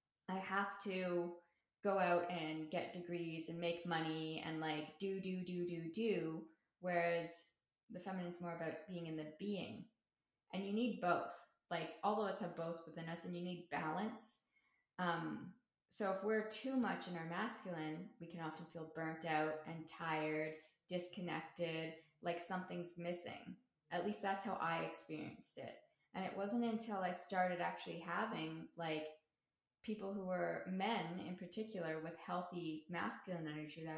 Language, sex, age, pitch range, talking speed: English, female, 20-39, 160-195 Hz, 160 wpm